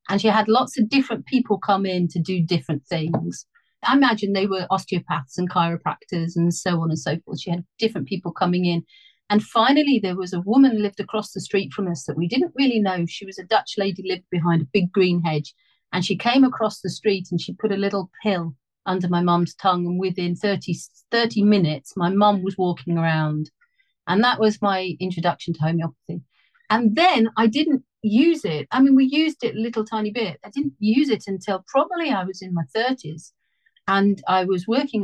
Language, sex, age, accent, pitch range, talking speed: English, female, 40-59, British, 175-225 Hz, 210 wpm